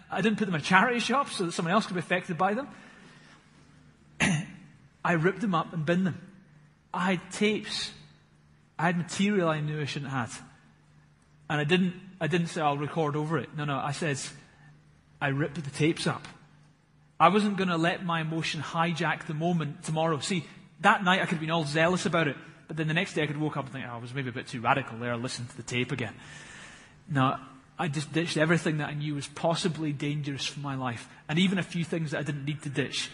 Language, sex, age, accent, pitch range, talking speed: English, male, 30-49, British, 140-175 Hz, 230 wpm